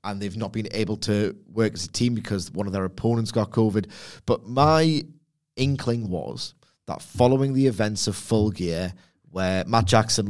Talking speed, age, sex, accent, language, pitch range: 180 wpm, 30-49, male, British, English, 95-115 Hz